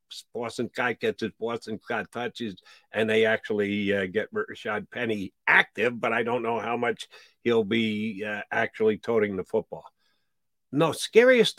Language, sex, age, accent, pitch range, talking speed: English, male, 50-69, American, 125-170 Hz, 155 wpm